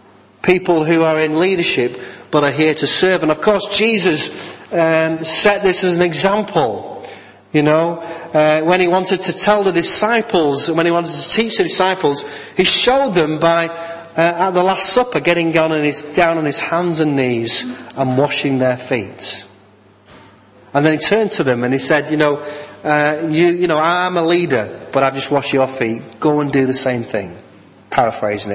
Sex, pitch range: male, 130-175 Hz